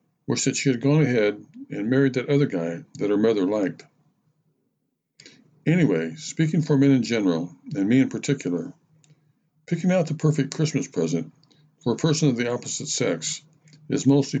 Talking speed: 165 wpm